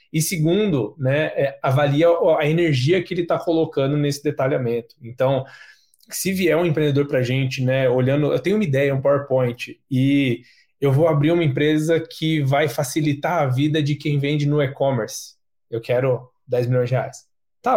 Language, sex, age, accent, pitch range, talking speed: Portuguese, male, 20-39, Brazilian, 135-175 Hz, 170 wpm